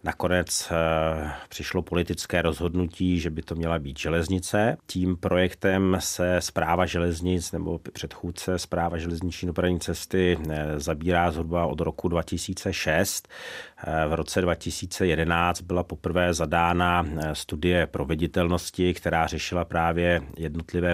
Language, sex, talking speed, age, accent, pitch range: Czech, male, 120 wpm, 40-59, native, 80-90 Hz